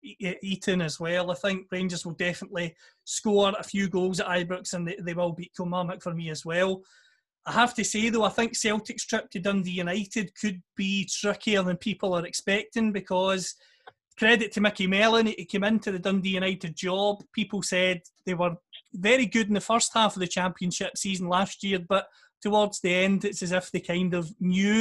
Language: English